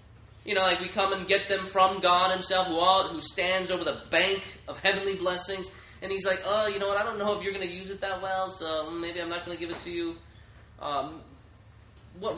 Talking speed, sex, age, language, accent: 245 wpm, male, 20-39, English, American